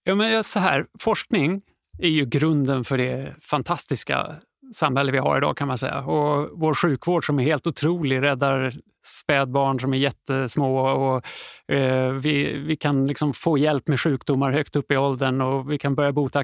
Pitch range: 135-175 Hz